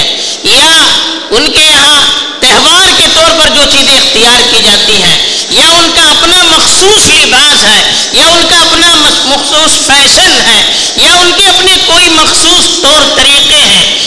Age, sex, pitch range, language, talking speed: 50-69, female, 260-355 Hz, Urdu, 155 wpm